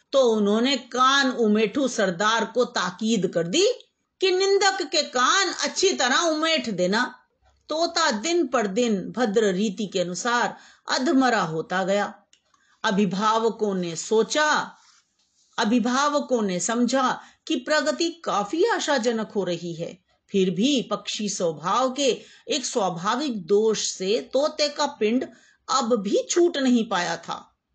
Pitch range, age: 210-280 Hz, 50-69